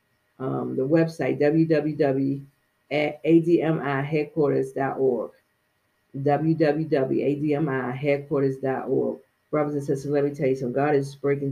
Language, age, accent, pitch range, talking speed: English, 40-59, American, 135-155 Hz, 85 wpm